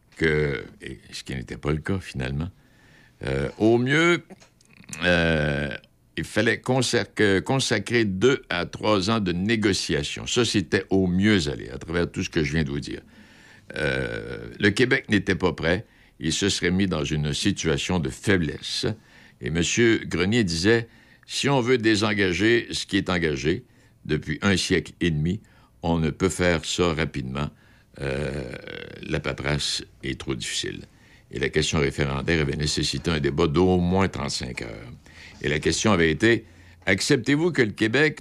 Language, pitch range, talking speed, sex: French, 80-110 Hz, 165 wpm, male